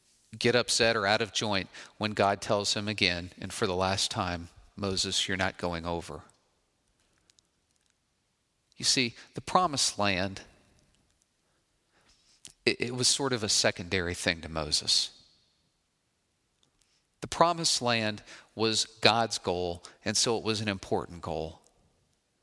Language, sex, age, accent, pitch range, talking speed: English, male, 40-59, American, 95-120 Hz, 130 wpm